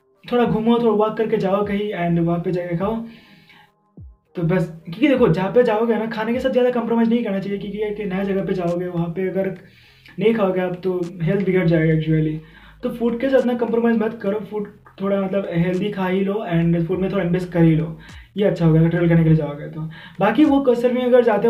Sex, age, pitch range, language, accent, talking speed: male, 20-39, 170-215 Hz, Hindi, native, 225 wpm